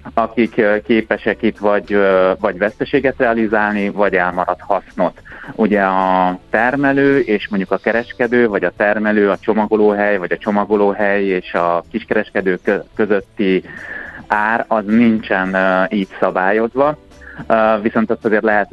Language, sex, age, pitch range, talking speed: Hungarian, male, 30-49, 95-110 Hz, 120 wpm